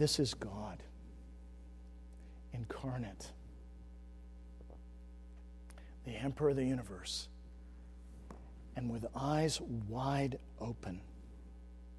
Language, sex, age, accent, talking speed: English, male, 50-69, American, 70 wpm